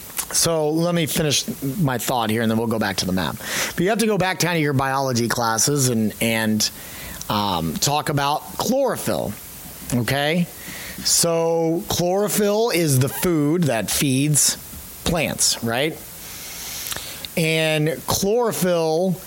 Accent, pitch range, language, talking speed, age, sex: American, 130-165 Hz, English, 135 wpm, 30-49, male